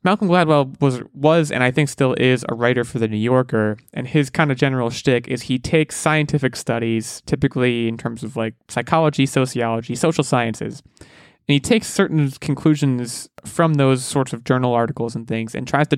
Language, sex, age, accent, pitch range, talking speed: English, male, 20-39, American, 120-150 Hz, 190 wpm